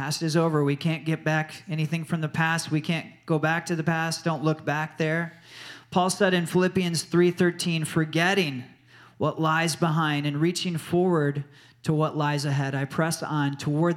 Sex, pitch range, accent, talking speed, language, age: male, 140-170 Hz, American, 180 wpm, English, 40-59